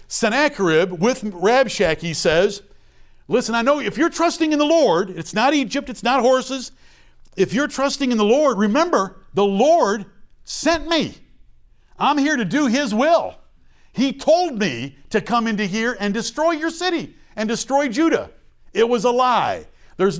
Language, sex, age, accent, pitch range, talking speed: English, male, 50-69, American, 175-240 Hz, 165 wpm